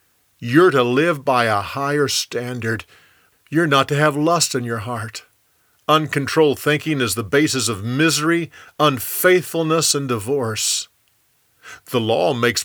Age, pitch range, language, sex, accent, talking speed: 50-69, 110-150 Hz, English, male, American, 135 wpm